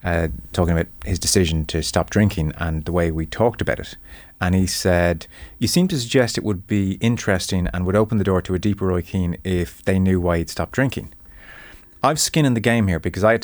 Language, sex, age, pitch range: English, male, 30-49, 85-105 Hz